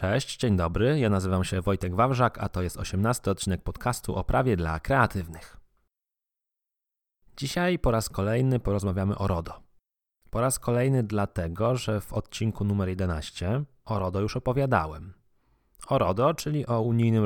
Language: Polish